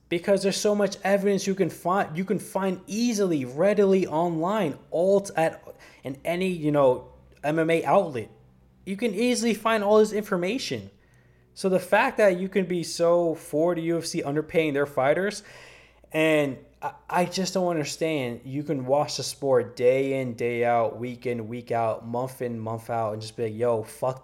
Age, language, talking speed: 20-39, English, 180 wpm